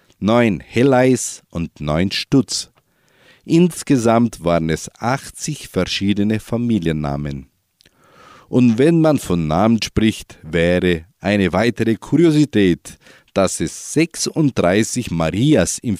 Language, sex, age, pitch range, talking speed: German, male, 50-69, 90-125 Hz, 100 wpm